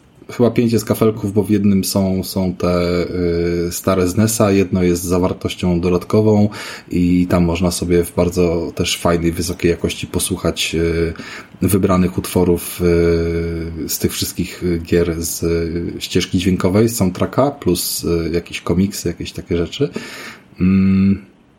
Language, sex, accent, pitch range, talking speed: Polish, male, native, 85-105 Hz, 130 wpm